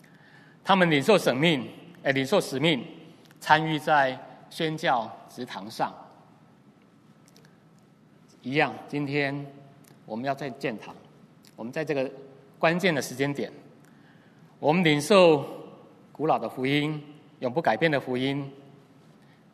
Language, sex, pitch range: Chinese, male, 130-170 Hz